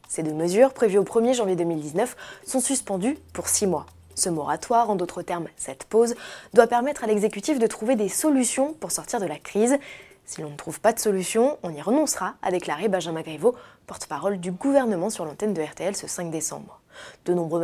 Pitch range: 175-255 Hz